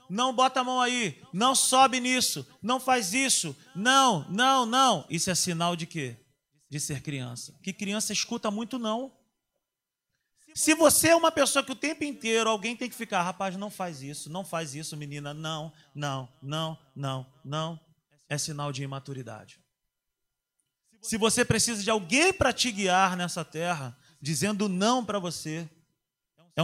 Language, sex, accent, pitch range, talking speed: Portuguese, male, Brazilian, 160-260 Hz, 160 wpm